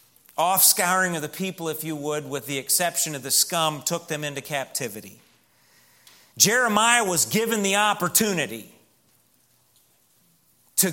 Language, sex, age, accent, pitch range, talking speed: English, male, 40-59, American, 150-190 Hz, 125 wpm